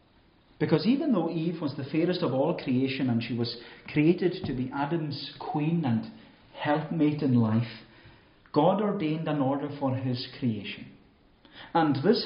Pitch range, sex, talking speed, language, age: 125-175 Hz, male, 150 wpm, English, 40-59